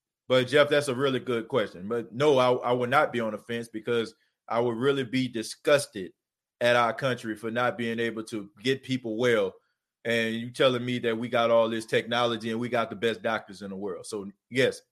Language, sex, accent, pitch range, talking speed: English, male, American, 115-140 Hz, 220 wpm